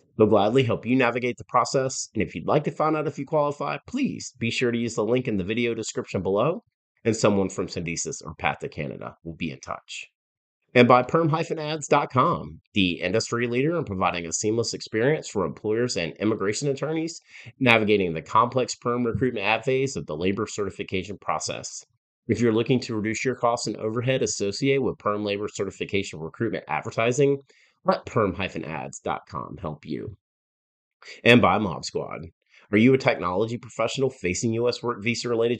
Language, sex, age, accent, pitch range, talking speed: English, male, 30-49, American, 100-130 Hz, 170 wpm